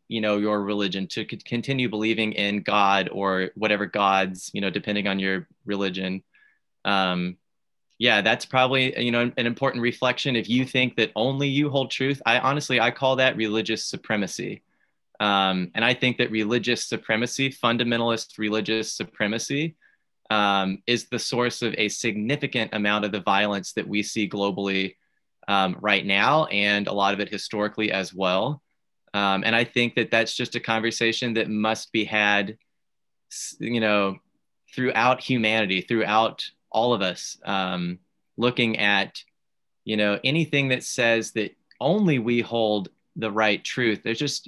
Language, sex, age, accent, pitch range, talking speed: English, male, 20-39, American, 100-125 Hz, 155 wpm